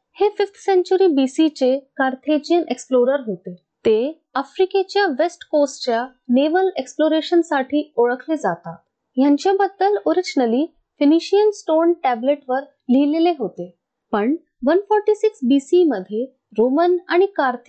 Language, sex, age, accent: Marathi, female, 20-39, native